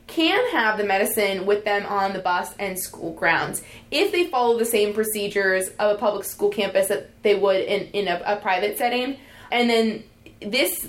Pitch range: 195-230 Hz